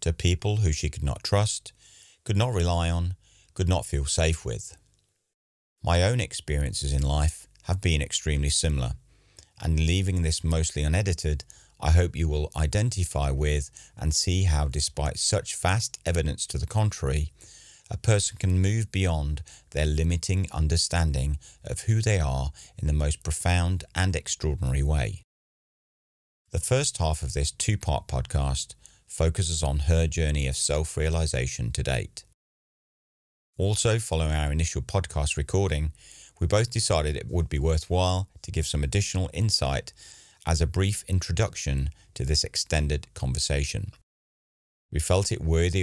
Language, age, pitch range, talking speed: English, 40-59, 75-95 Hz, 145 wpm